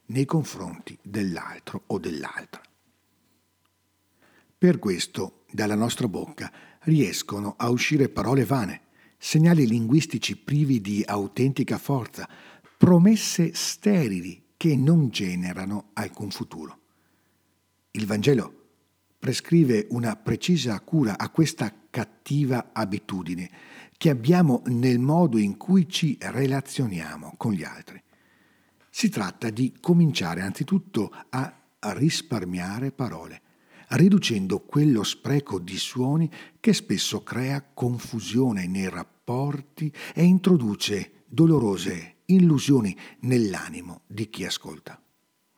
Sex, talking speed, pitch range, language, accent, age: male, 100 wpm, 105-155 Hz, Italian, native, 50-69